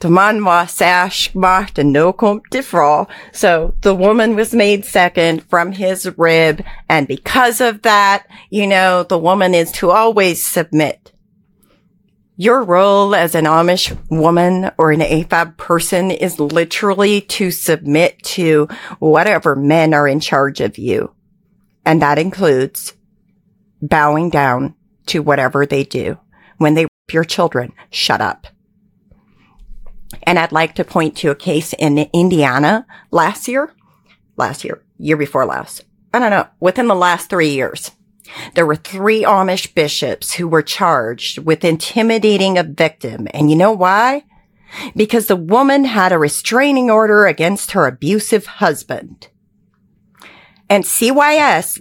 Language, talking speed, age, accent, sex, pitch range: English, 130 wpm, 40-59, American, female, 160-215 Hz